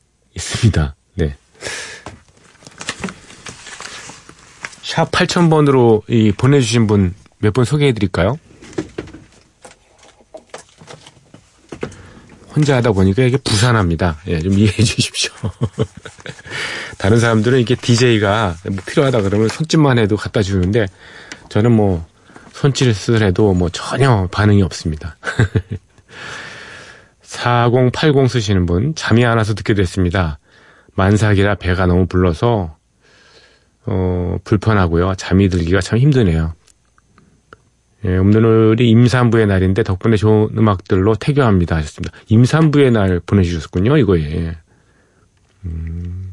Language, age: Korean, 40-59